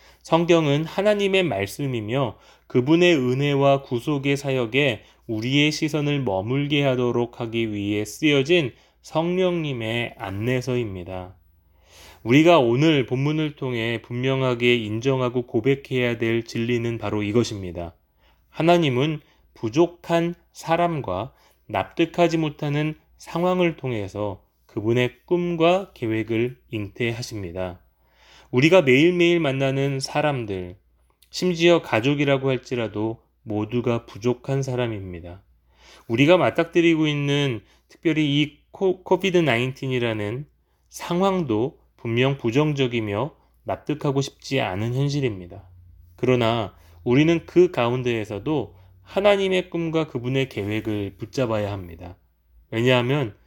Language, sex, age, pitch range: Korean, male, 20-39, 105-150 Hz